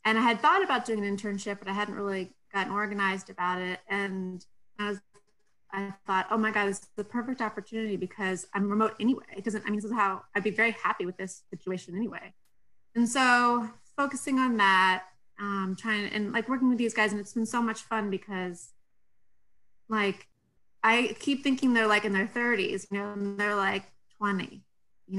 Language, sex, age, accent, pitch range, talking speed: English, female, 30-49, American, 195-230 Hz, 195 wpm